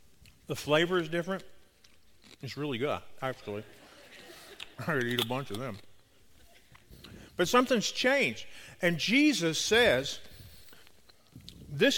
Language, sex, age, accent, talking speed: English, male, 50-69, American, 110 wpm